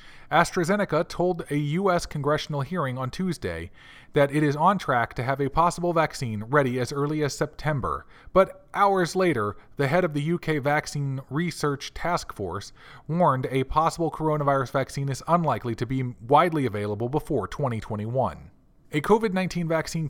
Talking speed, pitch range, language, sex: 150 wpm, 130-165 Hz, English, male